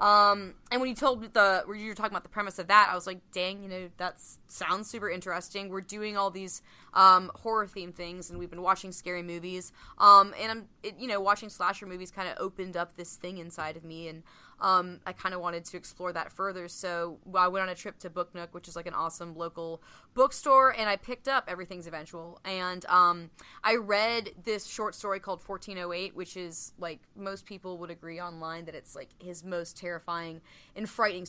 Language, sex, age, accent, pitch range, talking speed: English, female, 10-29, American, 175-205 Hz, 215 wpm